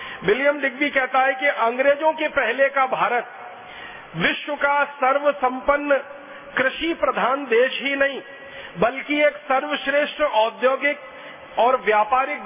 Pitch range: 245-280 Hz